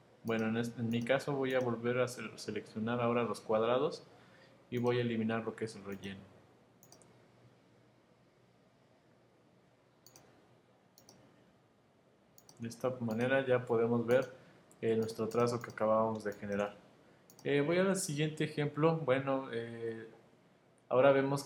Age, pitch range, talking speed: 20-39, 115-135 Hz, 125 wpm